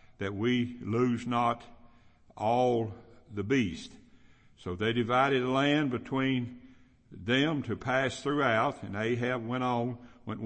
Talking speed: 125 wpm